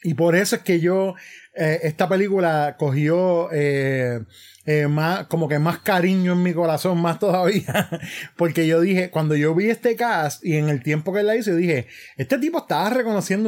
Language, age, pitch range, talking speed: Spanish, 30-49, 150-195 Hz, 195 wpm